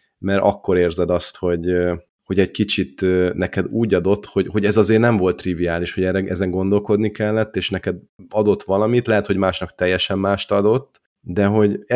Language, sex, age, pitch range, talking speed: Hungarian, male, 30-49, 85-105 Hz, 170 wpm